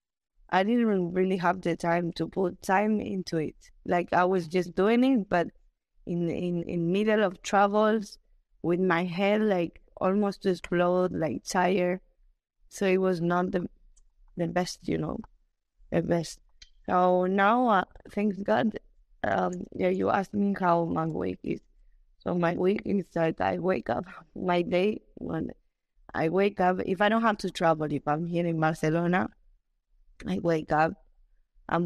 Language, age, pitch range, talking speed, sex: English, 20-39, 160-185 Hz, 165 wpm, female